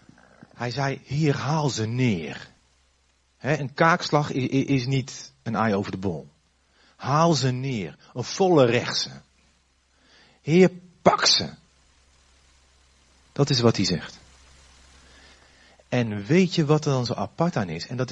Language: Dutch